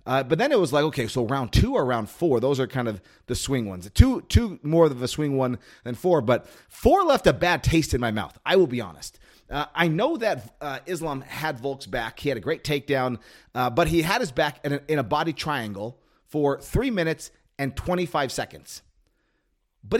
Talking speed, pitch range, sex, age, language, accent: 225 wpm, 125-175 Hz, male, 30-49, English, American